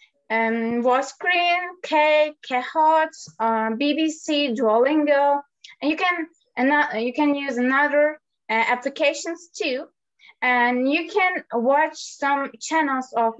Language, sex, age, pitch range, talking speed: Turkish, female, 20-39, 230-295 Hz, 110 wpm